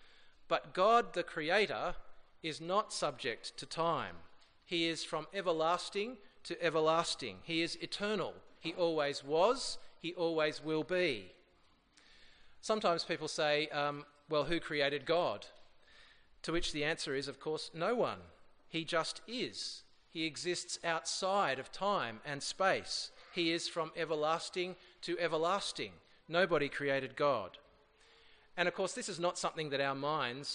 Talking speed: 140 wpm